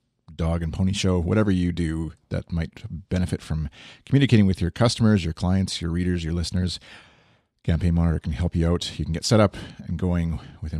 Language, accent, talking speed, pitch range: English, American, 195 wpm, 80-95 Hz